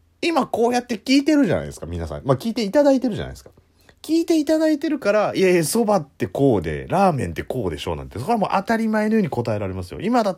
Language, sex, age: Japanese, male, 30-49